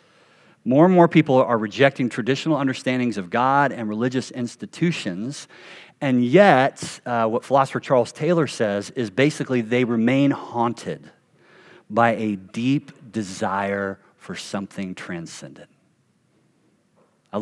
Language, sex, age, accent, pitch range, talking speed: English, male, 40-59, American, 105-135 Hz, 115 wpm